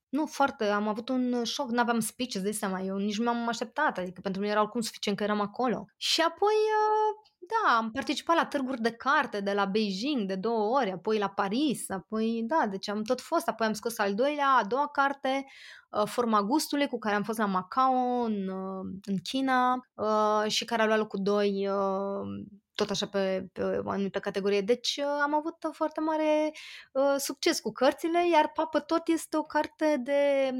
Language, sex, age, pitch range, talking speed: Romanian, female, 20-39, 210-280 Hz, 185 wpm